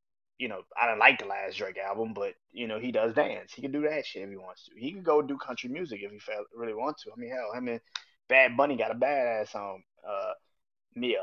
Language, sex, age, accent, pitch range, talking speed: English, male, 20-39, American, 115-155 Hz, 255 wpm